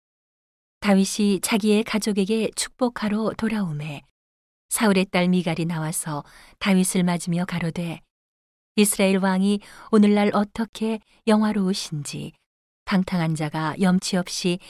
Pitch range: 165-205 Hz